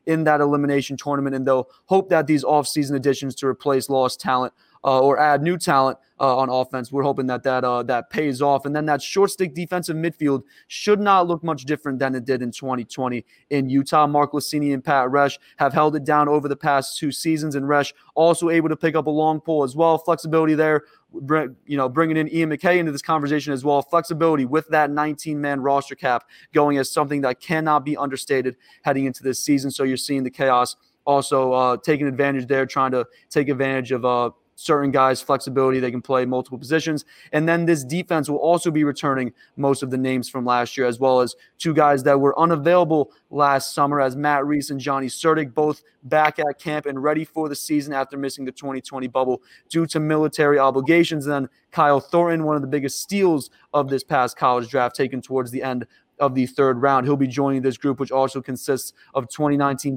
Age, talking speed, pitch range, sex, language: 20-39, 210 wpm, 135-155 Hz, male, English